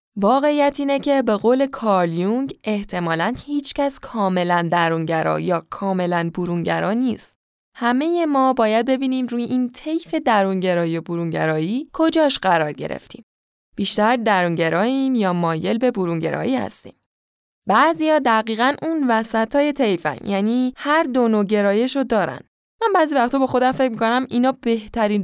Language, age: Persian, 10-29